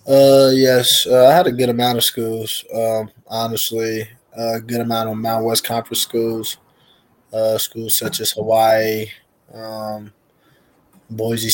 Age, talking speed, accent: 20-39, 145 wpm, American